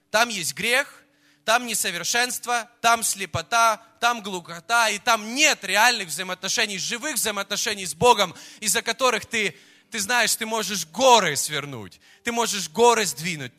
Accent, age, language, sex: native, 20-39, Russian, male